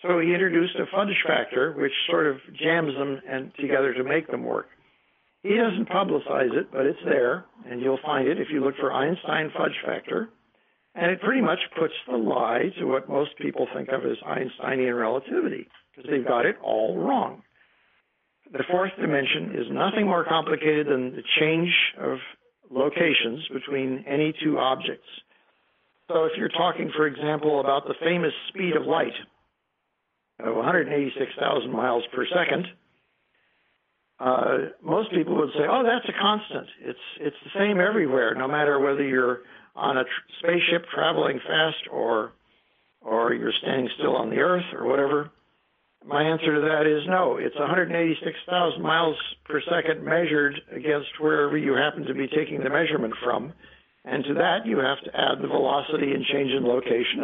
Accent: American